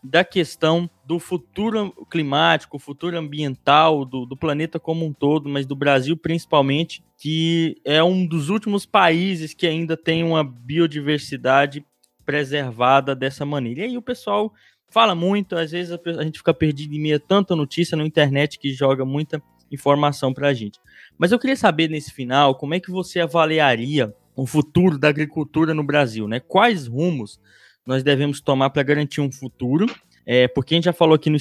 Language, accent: Portuguese, Brazilian